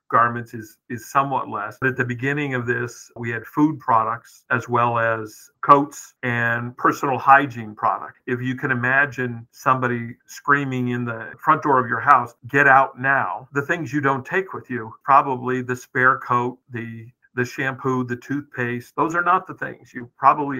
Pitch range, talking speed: 115-130 Hz, 180 wpm